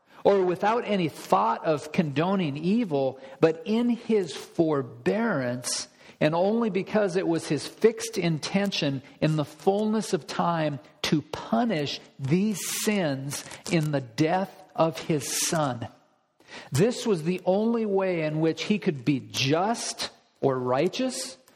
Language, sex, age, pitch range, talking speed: English, male, 50-69, 155-205 Hz, 130 wpm